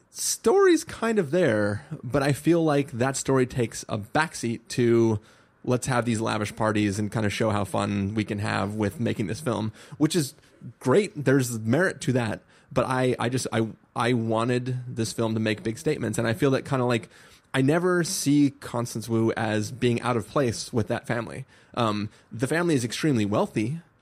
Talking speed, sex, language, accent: 195 wpm, male, English, American